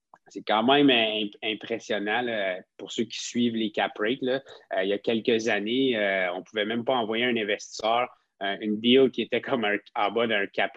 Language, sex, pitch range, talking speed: French, male, 105-125 Hz, 205 wpm